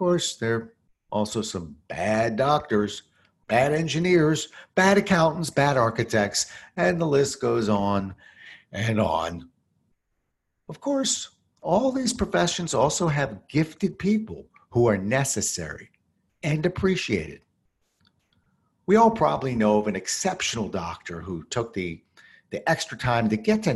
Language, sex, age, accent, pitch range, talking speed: English, male, 50-69, American, 105-155 Hz, 130 wpm